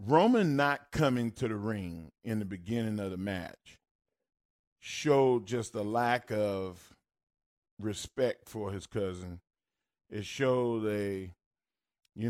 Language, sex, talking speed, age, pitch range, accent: English, male, 120 wpm, 40-59, 100-140 Hz, American